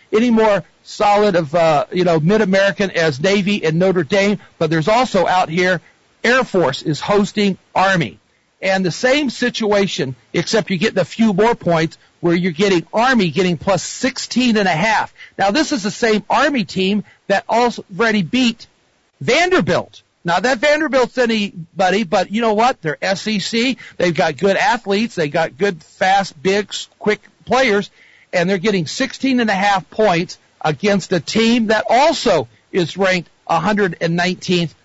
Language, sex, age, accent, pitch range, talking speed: English, male, 50-69, American, 170-215 Hz, 155 wpm